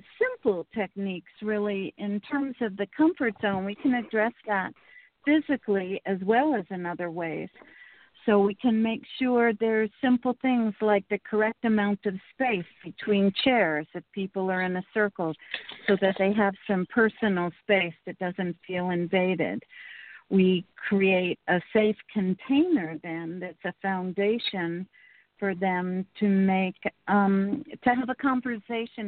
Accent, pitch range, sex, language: American, 180-220 Hz, female, English